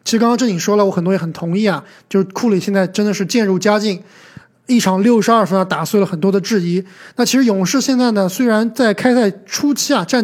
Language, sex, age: Chinese, male, 20-39